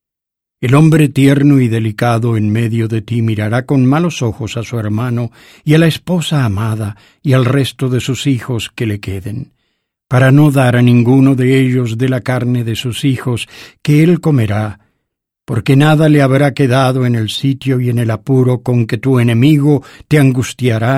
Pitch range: 115-135 Hz